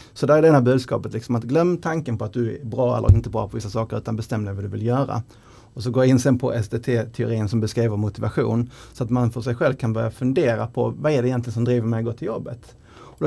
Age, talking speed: 30-49, 270 wpm